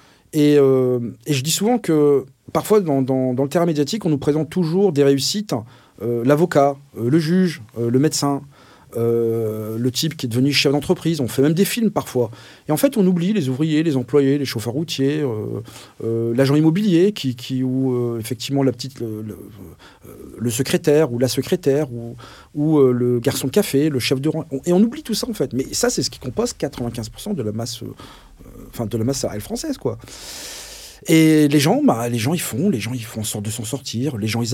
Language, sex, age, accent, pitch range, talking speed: French, male, 40-59, French, 120-155 Hz, 220 wpm